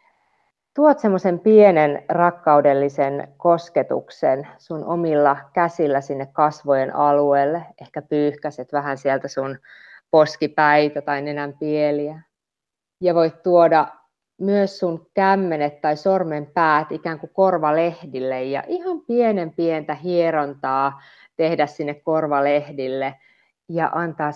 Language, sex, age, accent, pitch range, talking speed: Finnish, female, 30-49, native, 140-170 Hz, 100 wpm